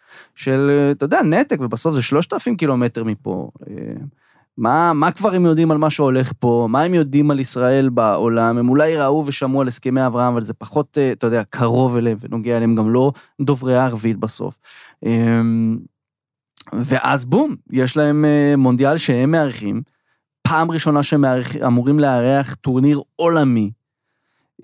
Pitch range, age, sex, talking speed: 120-150 Hz, 20-39, male, 150 wpm